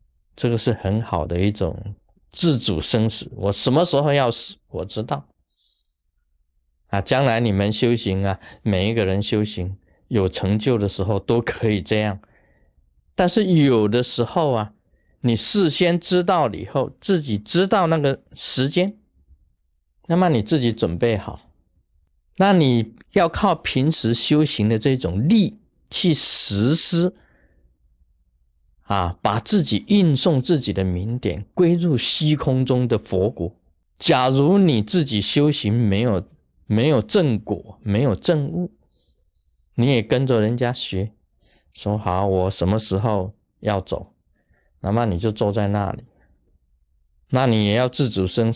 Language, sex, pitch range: Chinese, male, 90-135 Hz